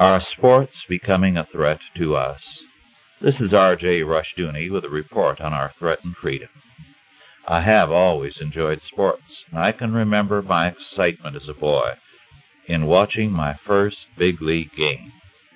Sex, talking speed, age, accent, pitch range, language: male, 150 wpm, 60-79, American, 85-115 Hz, English